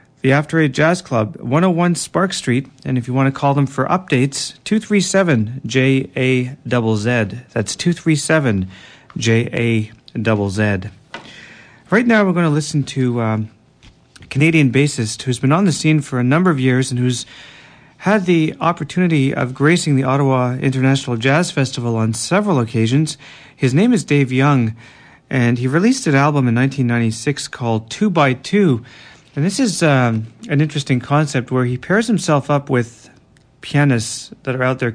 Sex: male